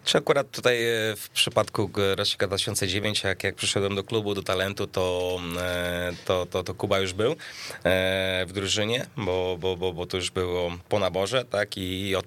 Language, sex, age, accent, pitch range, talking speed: Polish, male, 20-39, native, 90-105 Hz, 170 wpm